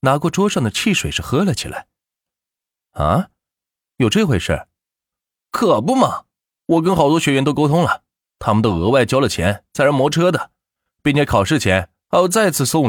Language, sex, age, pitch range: Chinese, male, 30-49, 95-160 Hz